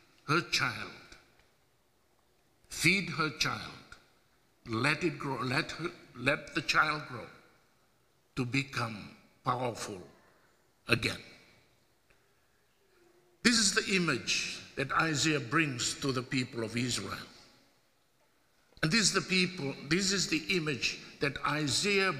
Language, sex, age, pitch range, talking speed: English, male, 60-79, 135-180 Hz, 110 wpm